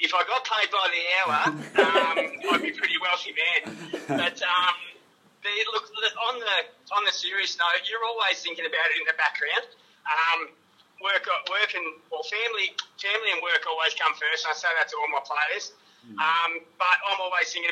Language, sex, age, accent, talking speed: English, male, 30-49, Australian, 195 wpm